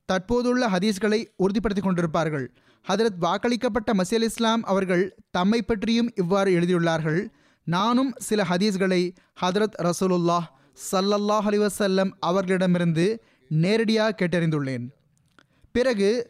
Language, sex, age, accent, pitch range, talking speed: Tamil, male, 20-39, native, 180-225 Hz, 90 wpm